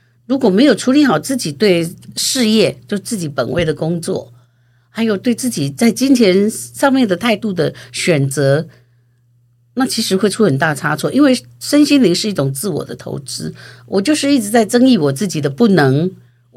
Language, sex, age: Chinese, female, 50-69